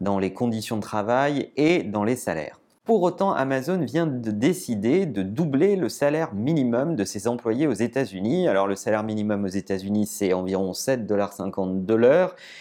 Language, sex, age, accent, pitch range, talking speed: French, male, 30-49, French, 100-145 Hz, 170 wpm